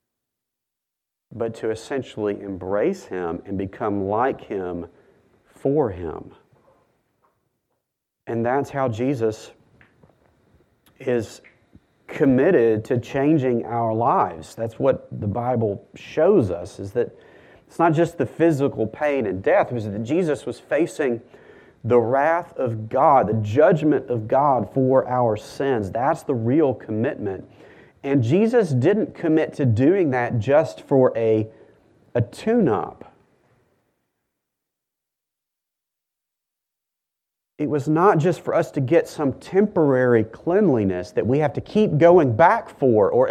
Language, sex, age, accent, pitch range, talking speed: English, male, 40-59, American, 115-160 Hz, 125 wpm